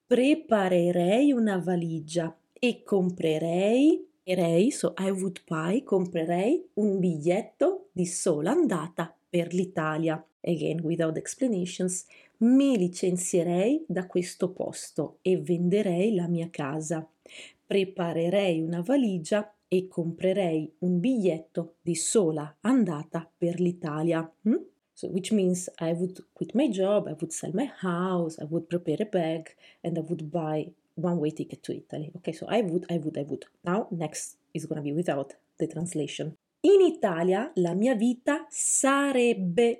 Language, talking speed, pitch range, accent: Italian, 140 wpm, 165-210 Hz, native